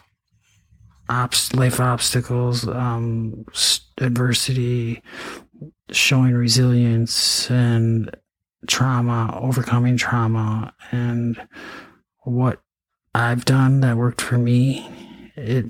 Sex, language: male, English